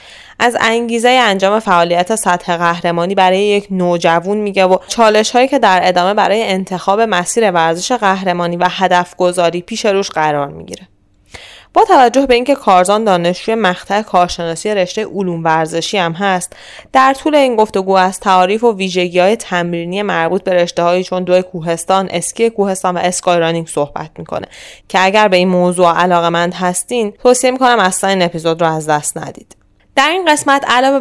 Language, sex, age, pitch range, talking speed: Persian, female, 20-39, 170-215 Hz, 165 wpm